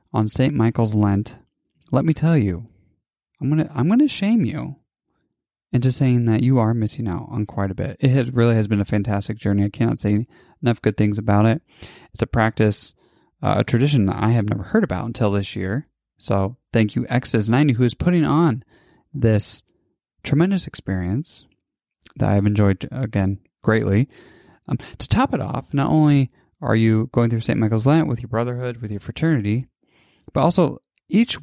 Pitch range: 105-135 Hz